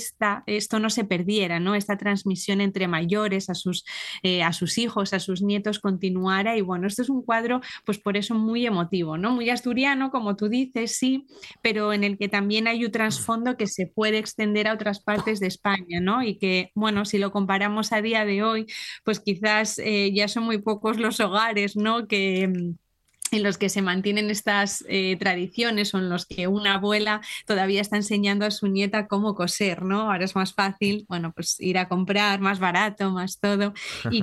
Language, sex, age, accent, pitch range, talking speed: Spanish, female, 20-39, Spanish, 195-220 Hz, 200 wpm